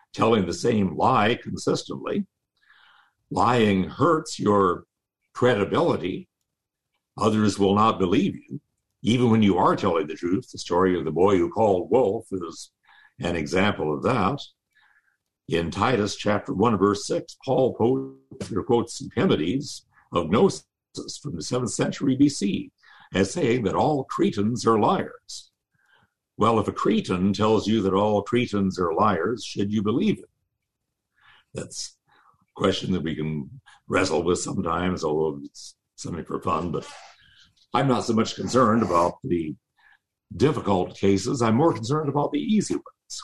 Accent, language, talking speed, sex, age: American, English, 145 wpm, male, 60-79